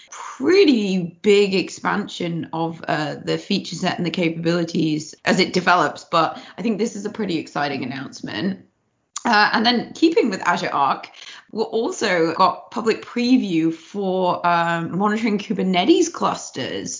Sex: female